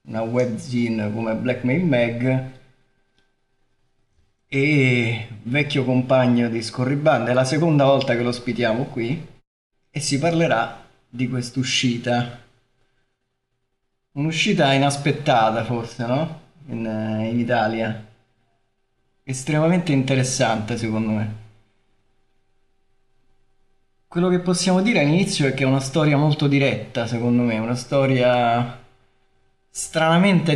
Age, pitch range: 20-39, 120-145 Hz